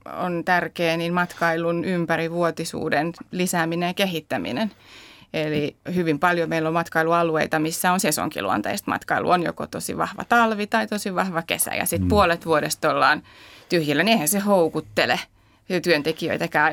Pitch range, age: 165-190 Hz, 30-49